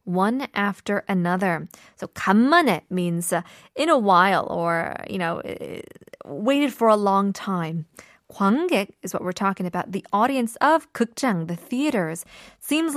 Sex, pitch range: female, 185-240 Hz